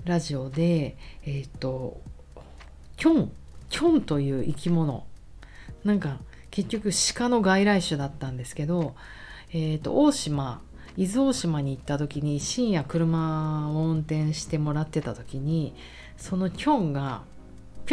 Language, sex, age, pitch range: Japanese, female, 40-59, 130-175 Hz